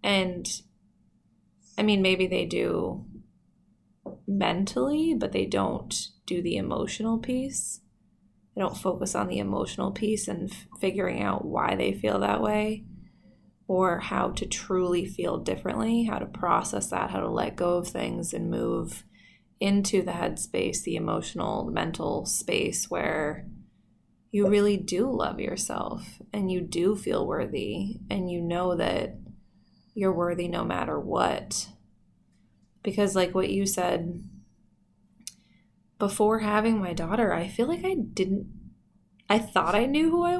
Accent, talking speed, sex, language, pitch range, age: American, 140 wpm, female, English, 185-220 Hz, 20-39